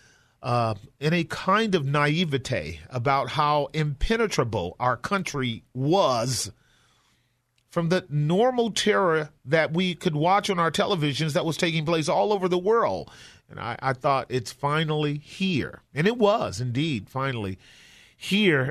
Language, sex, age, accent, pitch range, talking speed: English, male, 40-59, American, 125-165 Hz, 145 wpm